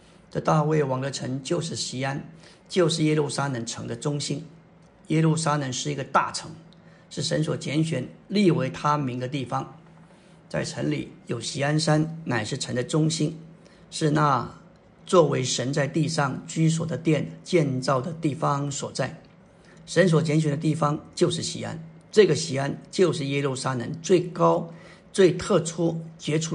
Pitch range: 145-175 Hz